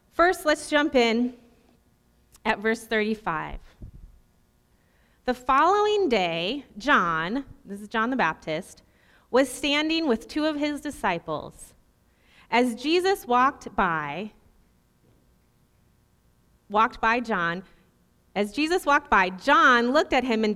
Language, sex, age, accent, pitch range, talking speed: English, female, 30-49, American, 205-295 Hz, 115 wpm